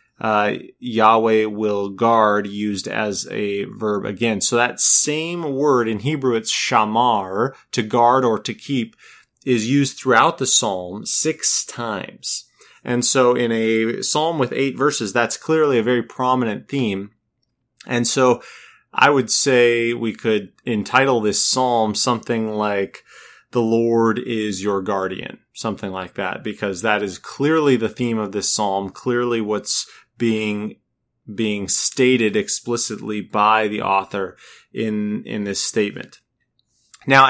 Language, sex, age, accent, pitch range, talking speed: English, male, 30-49, American, 105-125 Hz, 140 wpm